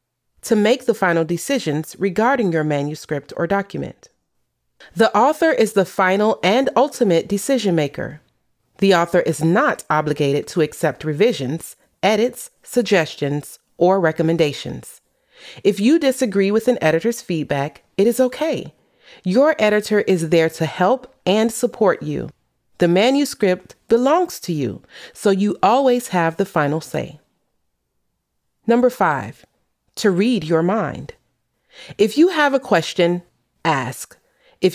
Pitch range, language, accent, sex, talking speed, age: 165-240 Hz, English, American, female, 130 wpm, 30-49